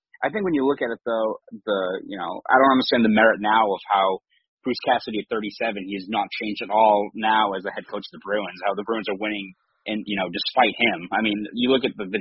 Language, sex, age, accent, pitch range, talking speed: English, male, 30-49, American, 100-120 Hz, 265 wpm